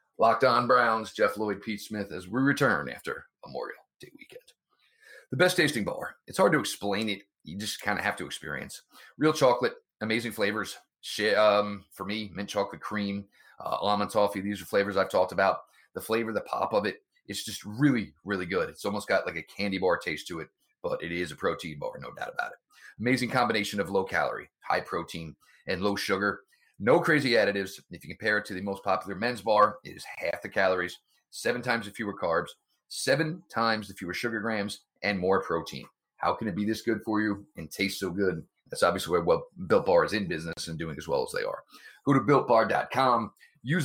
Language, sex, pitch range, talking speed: English, male, 100-125 Hz, 210 wpm